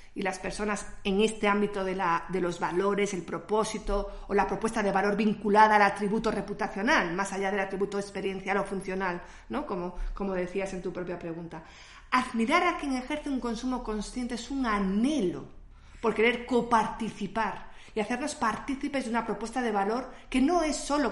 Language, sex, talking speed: Spanish, female, 175 wpm